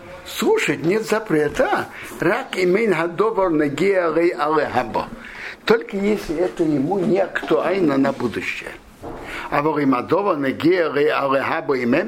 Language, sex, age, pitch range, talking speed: Russian, male, 60-79, 155-240 Hz, 55 wpm